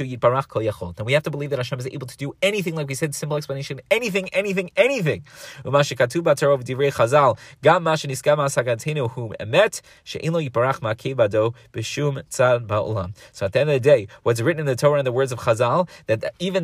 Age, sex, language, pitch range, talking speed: 20-39, male, English, 125-155 Hz, 140 wpm